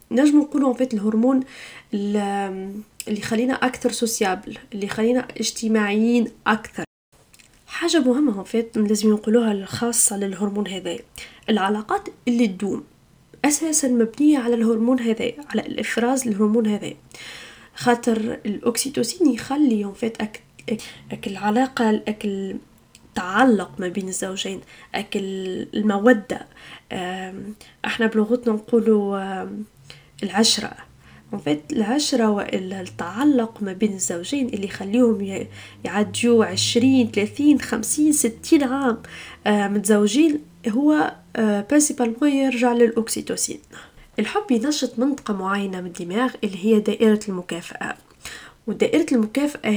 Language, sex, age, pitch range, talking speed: Arabic, female, 10-29, 205-250 Hz, 95 wpm